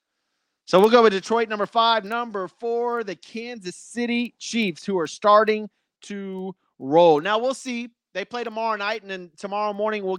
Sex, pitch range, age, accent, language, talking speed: male, 165-215 Hz, 30-49, American, English, 175 wpm